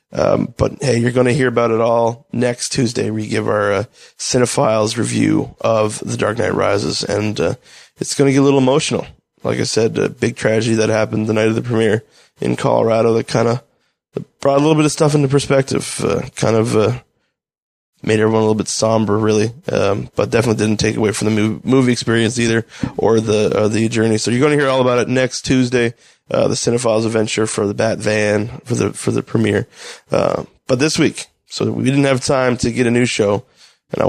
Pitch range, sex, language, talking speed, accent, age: 110-125 Hz, male, English, 220 wpm, American, 20-39